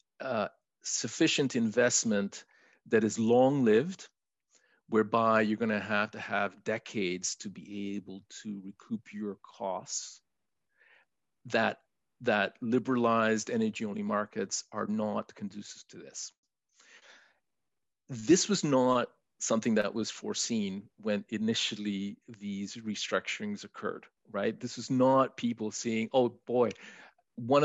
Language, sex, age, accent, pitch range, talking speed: English, male, 40-59, Canadian, 110-145 Hz, 115 wpm